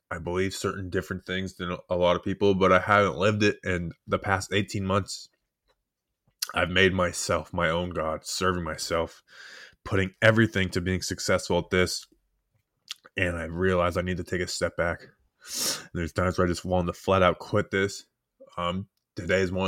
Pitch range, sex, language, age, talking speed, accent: 85-100 Hz, male, English, 20-39, 185 wpm, American